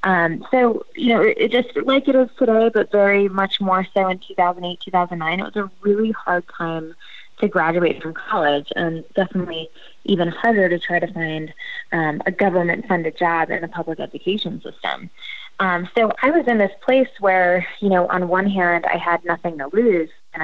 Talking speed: 185 wpm